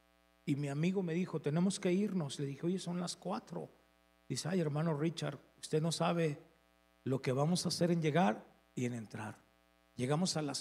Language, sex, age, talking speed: Spanish, male, 50-69, 190 wpm